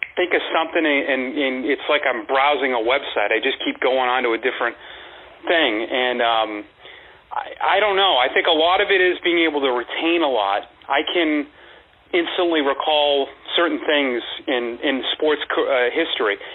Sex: male